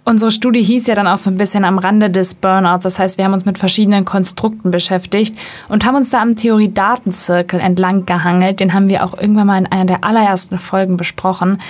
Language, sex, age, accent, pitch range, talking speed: German, female, 20-39, German, 185-220 Hz, 215 wpm